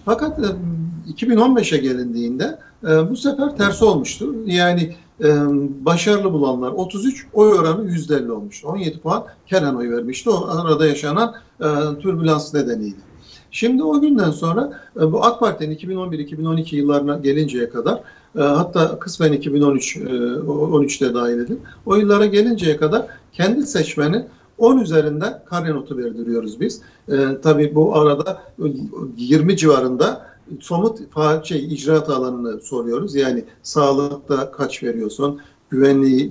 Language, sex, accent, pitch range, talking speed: Turkish, male, native, 140-195 Hz, 115 wpm